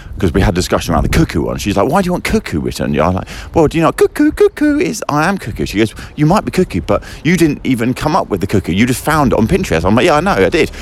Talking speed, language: 320 wpm, English